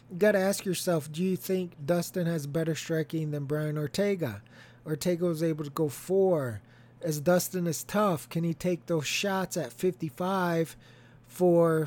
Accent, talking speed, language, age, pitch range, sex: American, 160 wpm, English, 20-39, 145-175 Hz, male